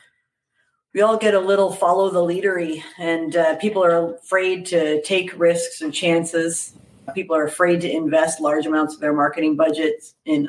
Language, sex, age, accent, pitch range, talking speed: English, female, 40-59, American, 160-180 Hz, 170 wpm